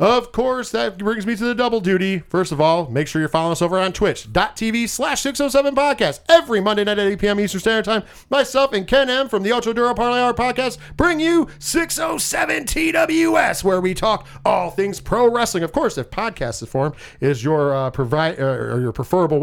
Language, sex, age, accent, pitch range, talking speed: English, male, 40-59, American, 145-230 Hz, 195 wpm